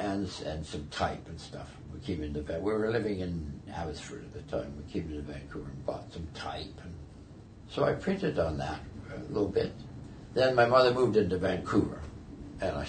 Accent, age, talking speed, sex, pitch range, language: American, 60-79, 195 wpm, male, 85-115 Hz, English